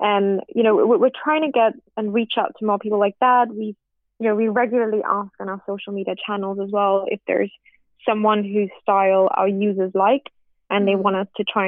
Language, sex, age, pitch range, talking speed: English, female, 20-39, 200-230 Hz, 215 wpm